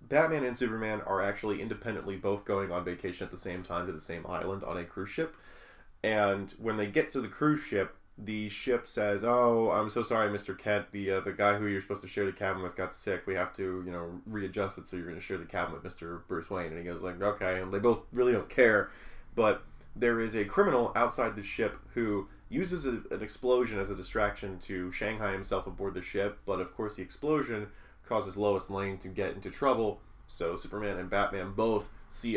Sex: male